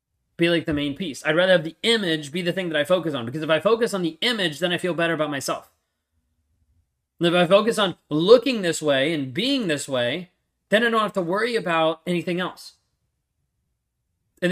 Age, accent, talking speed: 20-39, American, 210 wpm